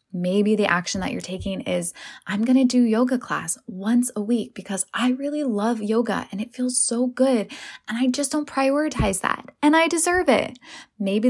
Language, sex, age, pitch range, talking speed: English, female, 10-29, 195-255 Hz, 195 wpm